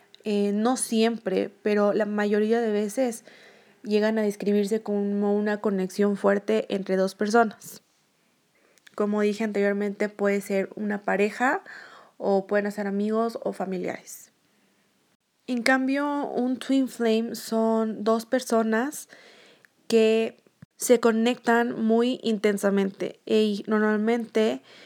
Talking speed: 110 wpm